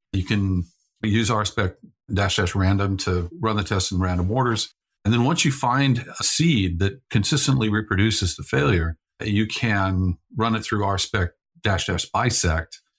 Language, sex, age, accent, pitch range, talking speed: English, male, 50-69, American, 95-120 Hz, 160 wpm